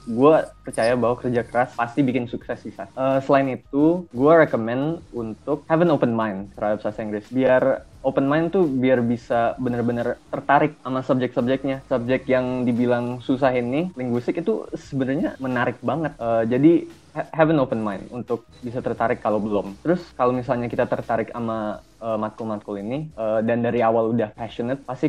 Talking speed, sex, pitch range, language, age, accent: 165 wpm, male, 115-140 Hz, Indonesian, 20-39, native